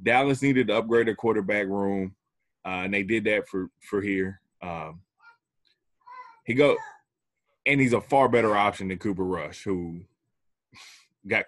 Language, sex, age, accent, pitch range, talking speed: English, male, 20-39, American, 95-120 Hz, 150 wpm